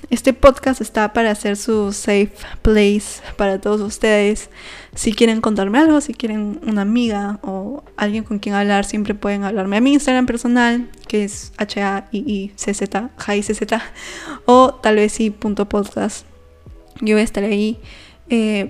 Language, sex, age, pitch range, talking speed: Spanish, female, 10-29, 200-230 Hz, 175 wpm